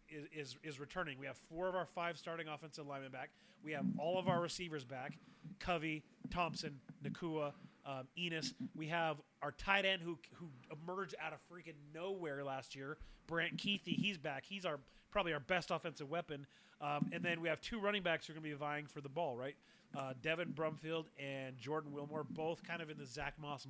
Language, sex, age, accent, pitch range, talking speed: English, male, 30-49, American, 145-185 Hz, 210 wpm